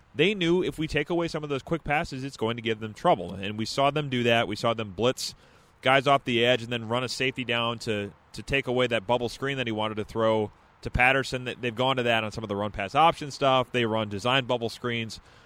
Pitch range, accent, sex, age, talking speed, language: 115-145 Hz, American, male, 30-49, 260 wpm, English